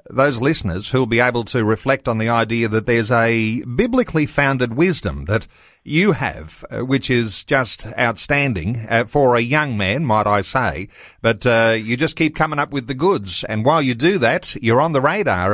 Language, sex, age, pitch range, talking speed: English, male, 40-59, 115-140 Hz, 190 wpm